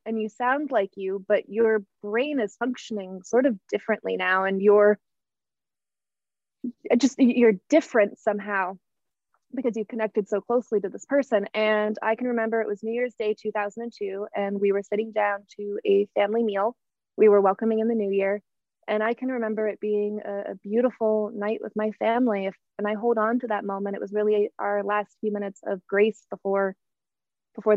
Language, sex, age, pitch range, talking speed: English, female, 20-39, 200-230 Hz, 185 wpm